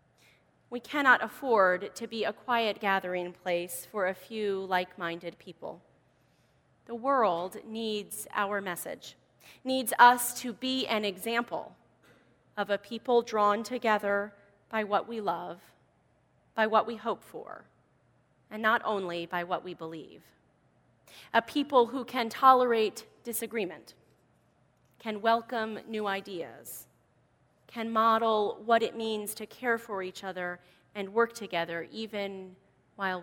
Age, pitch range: 30-49, 180-230 Hz